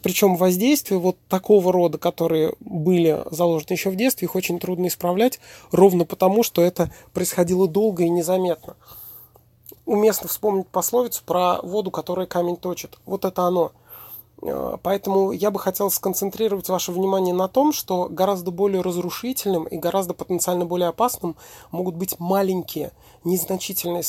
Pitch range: 160-190 Hz